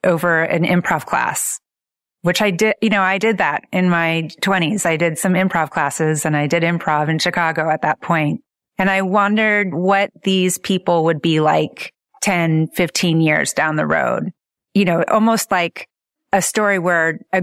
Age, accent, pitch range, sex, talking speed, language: 30-49, American, 165-200 Hz, female, 180 wpm, English